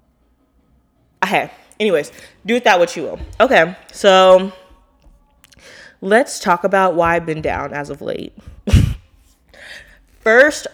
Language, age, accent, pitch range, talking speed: English, 20-39, American, 160-195 Hz, 110 wpm